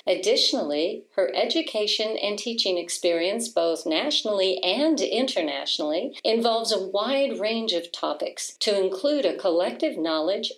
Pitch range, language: 170-250 Hz, English